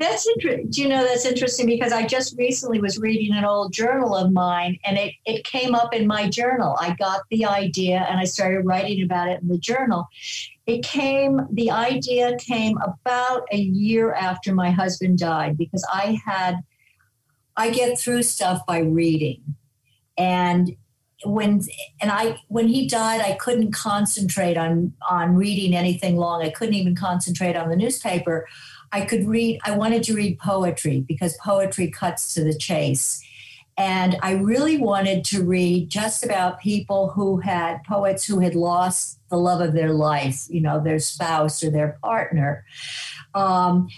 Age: 60-79